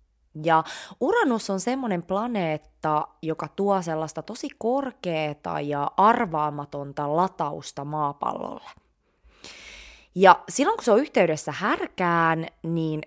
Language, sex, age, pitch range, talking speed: Finnish, female, 20-39, 150-195 Hz, 100 wpm